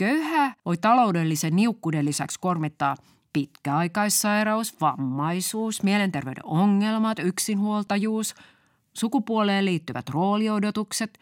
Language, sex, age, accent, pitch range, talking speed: Finnish, female, 30-49, native, 160-255 Hz, 75 wpm